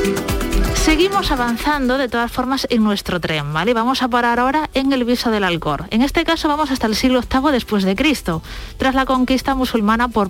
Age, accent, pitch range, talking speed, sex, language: 30-49, Spanish, 210-270 Hz, 200 wpm, female, Spanish